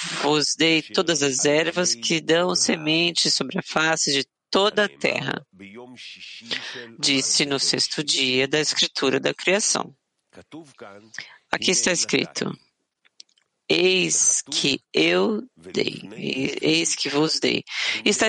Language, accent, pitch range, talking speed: English, Brazilian, 140-180 Hz, 115 wpm